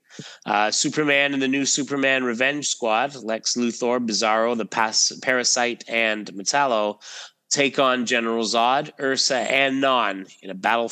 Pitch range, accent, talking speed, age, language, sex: 110-140 Hz, American, 145 wpm, 30-49, English, male